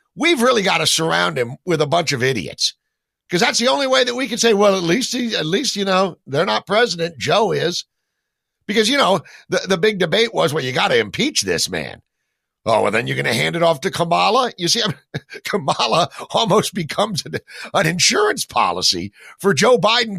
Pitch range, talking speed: 135-205 Hz, 205 wpm